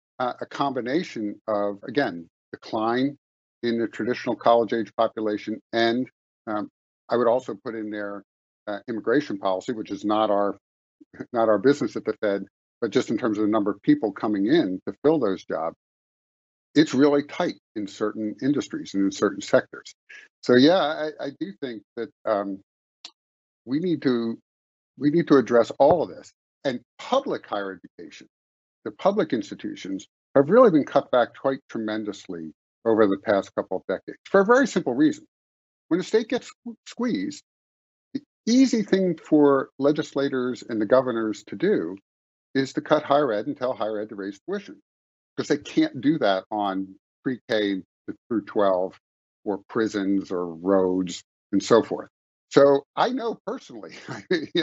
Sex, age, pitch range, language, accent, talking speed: male, 50-69, 100-155 Hz, English, American, 165 wpm